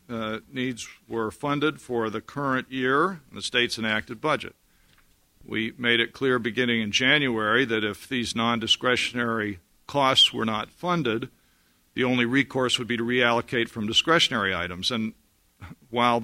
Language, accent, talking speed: English, American, 150 wpm